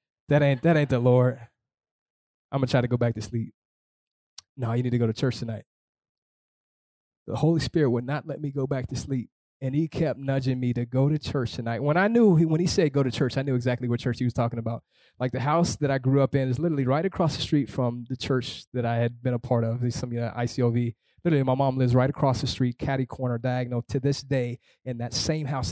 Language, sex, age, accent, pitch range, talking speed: English, male, 20-39, American, 125-150 Hz, 260 wpm